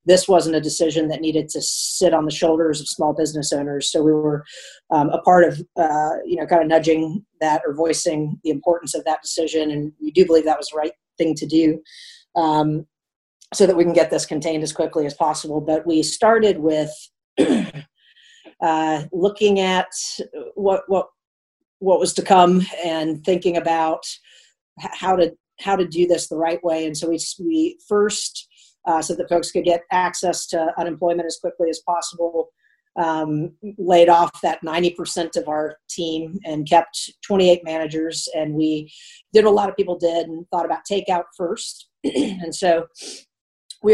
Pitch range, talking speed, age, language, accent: 160-185 Hz, 180 wpm, 40-59, English, American